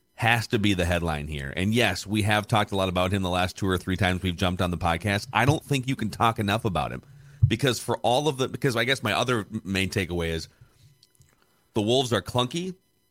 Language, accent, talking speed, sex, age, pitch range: English, American, 240 wpm, male, 40-59, 95-130 Hz